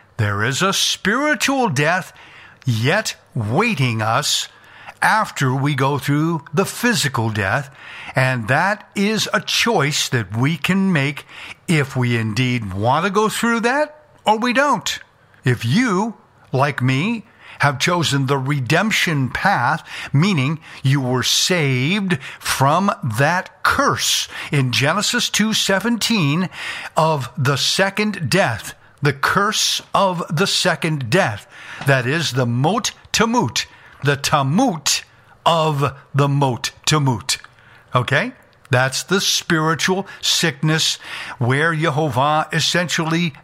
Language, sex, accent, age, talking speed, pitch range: English, male, American, 60-79, 115 wpm, 130-185 Hz